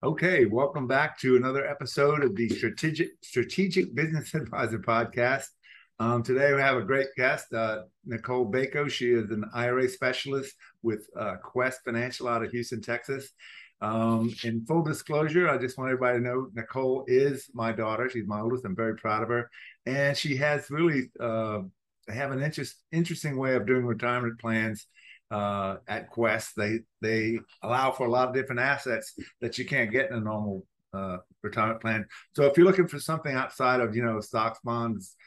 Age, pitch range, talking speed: 50-69, 115-130 Hz, 180 wpm